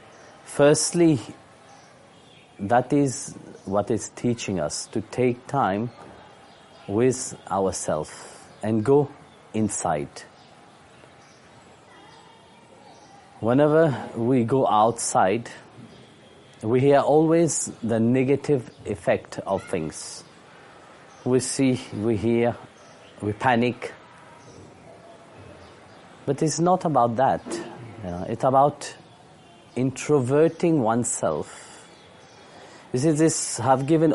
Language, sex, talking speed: Italian, male, 85 wpm